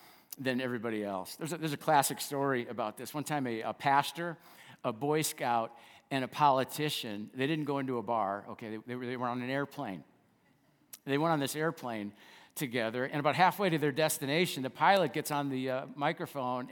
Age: 50-69